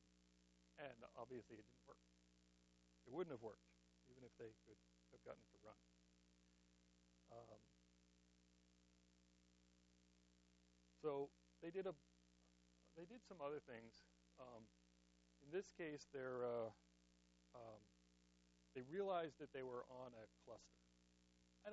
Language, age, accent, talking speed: English, 60-79, American, 120 wpm